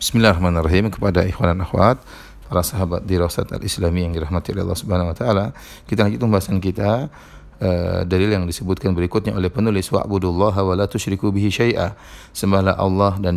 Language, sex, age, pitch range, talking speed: Indonesian, male, 30-49, 95-110 Hz, 160 wpm